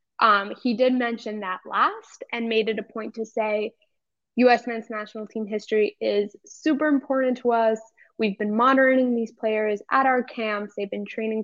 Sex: female